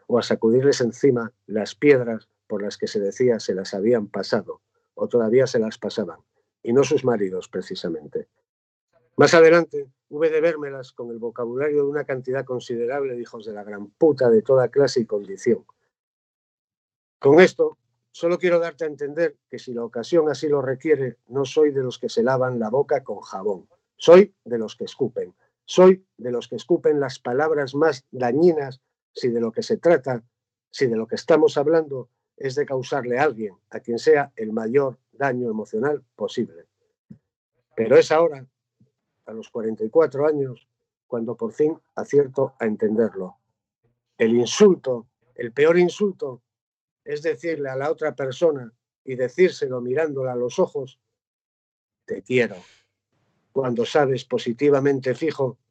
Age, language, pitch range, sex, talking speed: 50-69, Spanish, 120-160 Hz, male, 160 wpm